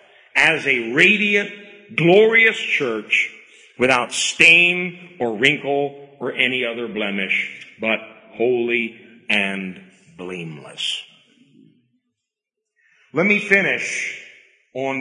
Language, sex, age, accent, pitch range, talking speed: English, male, 50-69, American, 125-205 Hz, 85 wpm